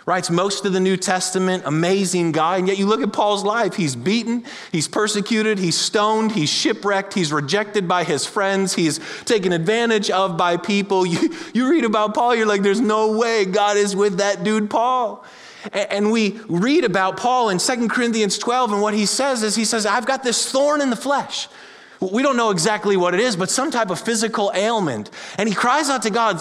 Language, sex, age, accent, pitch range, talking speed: English, male, 30-49, American, 175-240 Hz, 210 wpm